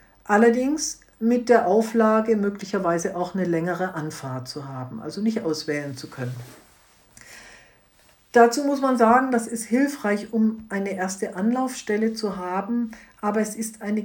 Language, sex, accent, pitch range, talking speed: German, female, German, 175-225 Hz, 140 wpm